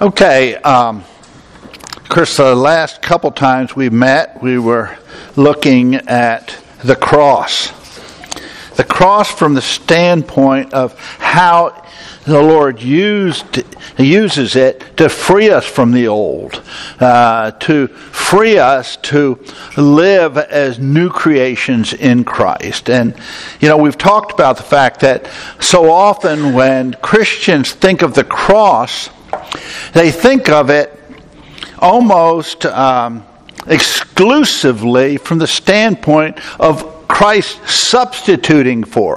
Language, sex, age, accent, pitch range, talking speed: English, male, 60-79, American, 135-195 Hz, 115 wpm